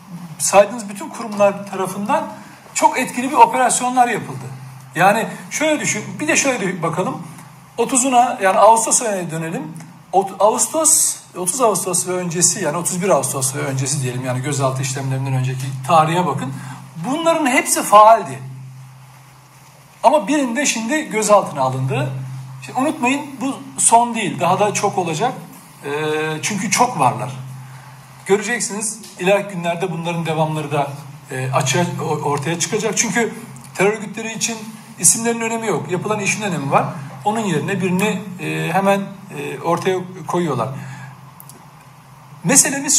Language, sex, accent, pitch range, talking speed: Turkish, male, native, 145-215 Hz, 125 wpm